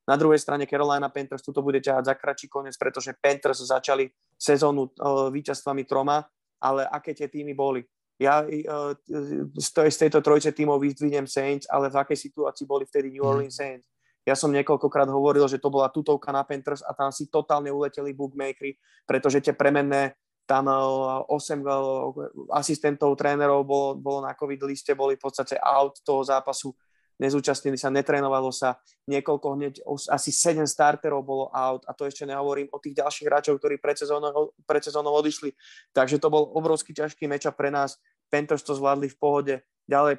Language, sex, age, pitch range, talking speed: Slovak, male, 20-39, 135-150 Hz, 170 wpm